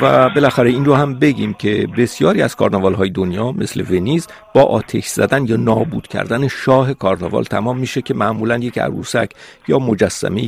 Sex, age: male, 50-69